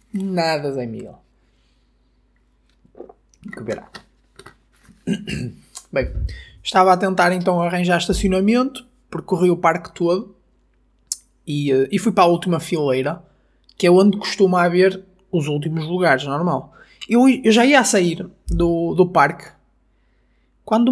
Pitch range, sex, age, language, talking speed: 150-190 Hz, male, 20-39, Portuguese, 120 wpm